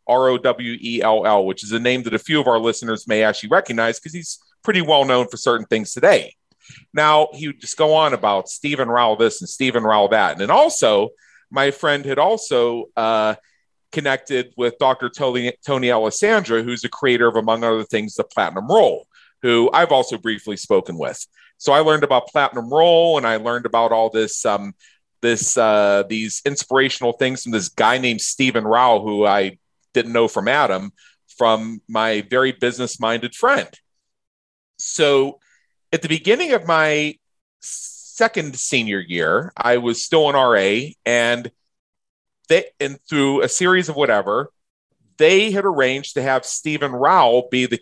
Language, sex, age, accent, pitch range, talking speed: English, male, 40-59, American, 115-150 Hz, 165 wpm